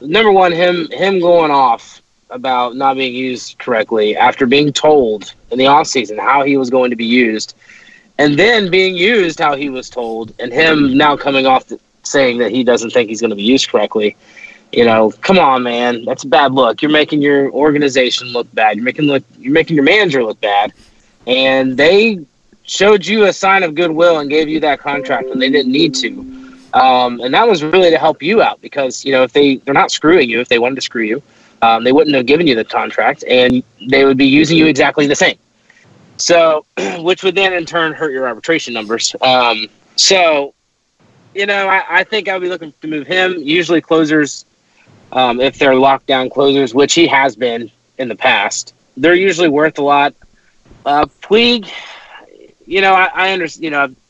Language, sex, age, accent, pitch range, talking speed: English, male, 30-49, American, 130-175 Hz, 205 wpm